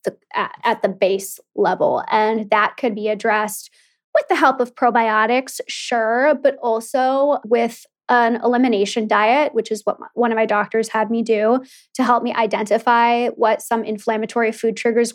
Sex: female